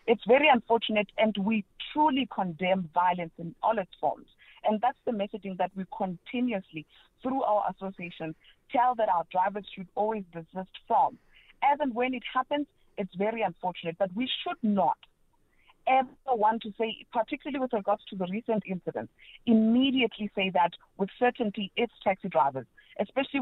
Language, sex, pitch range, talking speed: English, female, 185-245 Hz, 160 wpm